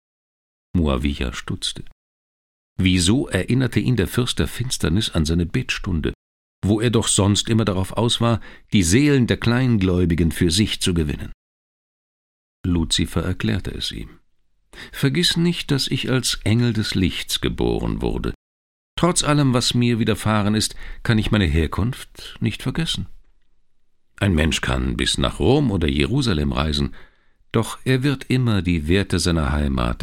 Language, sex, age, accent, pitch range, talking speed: German, male, 50-69, German, 75-115 Hz, 140 wpm